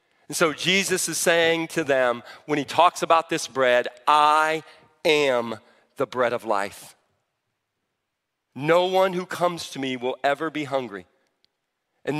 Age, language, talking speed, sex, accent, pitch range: 40-59, English, 150 wpm, male, American, 140-175 Hz